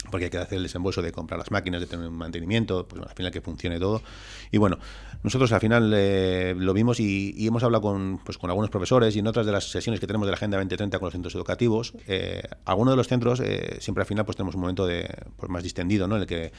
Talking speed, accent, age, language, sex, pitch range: 270 wpm, Spanish, 30-49, Spanish, male, 90-110 Hz